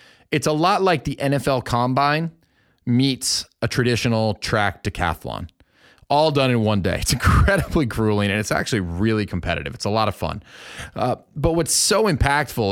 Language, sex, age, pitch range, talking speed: English, male, 30-49, 105-135 Hz, 165 wpm